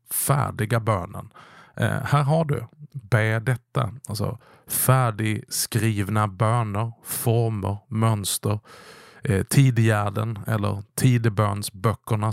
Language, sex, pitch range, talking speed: Swedish, male, 105-130 Hz, 85 wpm